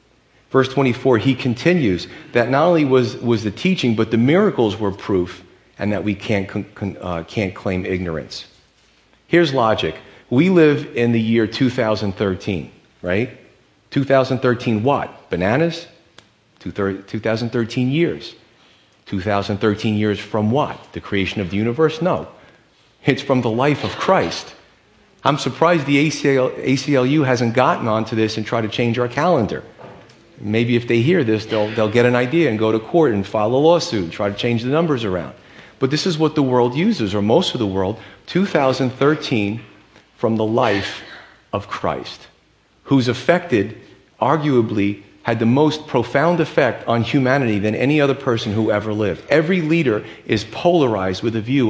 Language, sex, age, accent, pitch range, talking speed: English, male, 40-59, American, 105-140 Hz, 160 wpm